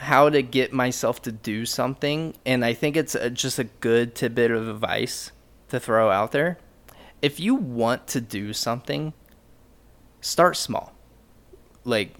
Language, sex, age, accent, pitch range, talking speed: English, male, 20-39, American, 110-135 Hz, 150 wpm